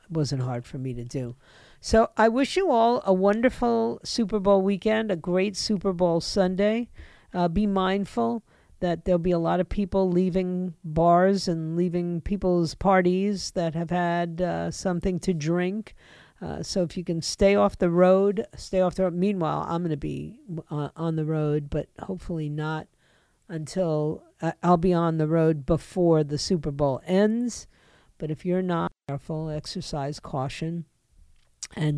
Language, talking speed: English, 165 wpm